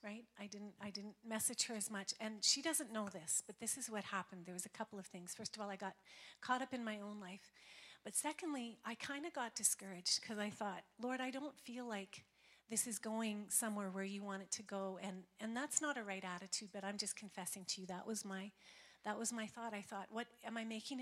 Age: 40-59